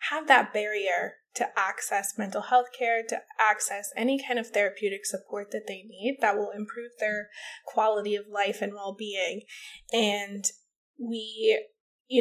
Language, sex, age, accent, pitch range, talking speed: English, female, 20-39, American, 210-255 Hz, 145 wpm